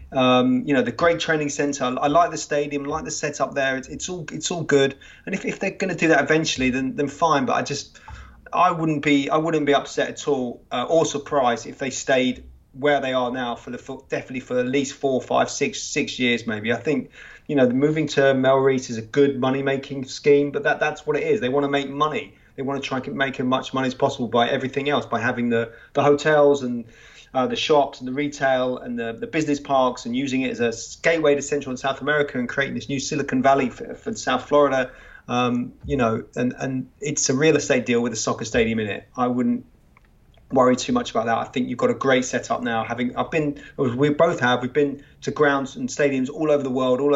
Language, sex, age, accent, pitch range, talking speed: English, male, 30-49, British, 125-150 Hz, 245 wpm